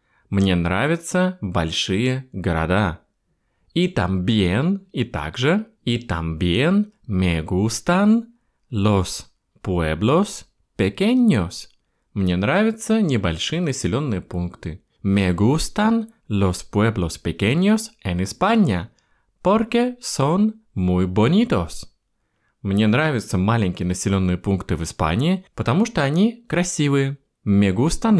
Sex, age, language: male, 20-39, Russian